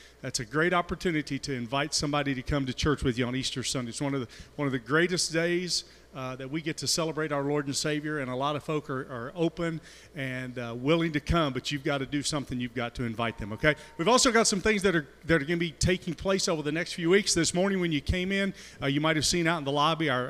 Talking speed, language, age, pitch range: 280 wpm, English, 40-59, 140-170 Hz